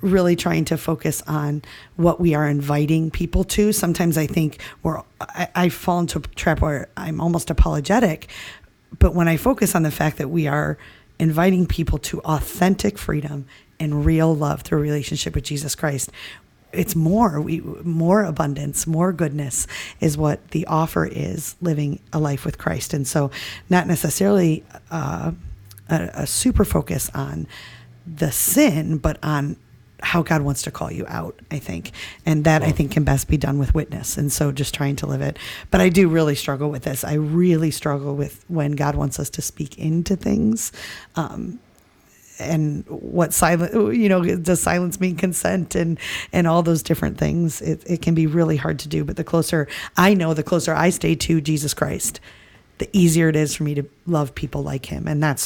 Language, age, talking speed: English, 40-59, 185 wpm